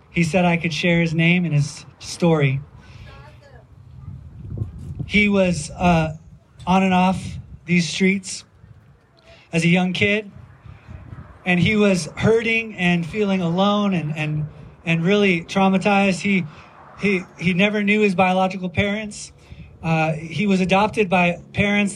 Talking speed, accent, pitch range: 130 wpm, American, 155-195 Hz